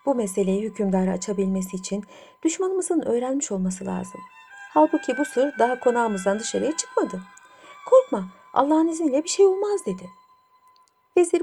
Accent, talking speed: native, 125 wpm